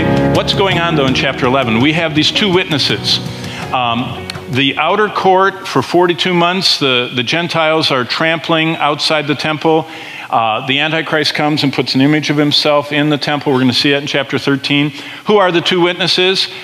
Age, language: 50-69, English